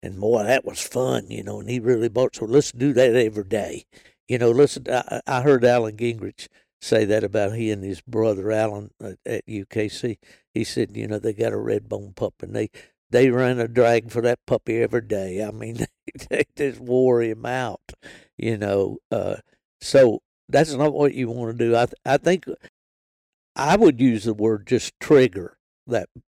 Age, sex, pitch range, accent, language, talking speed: 60-79, male, 100-120 Hz, American, English, 200 wpm